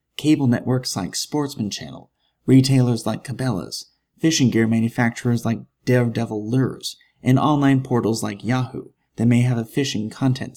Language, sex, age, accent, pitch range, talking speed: English, male, 30-49, American, 115-135 Hz, 140 wpm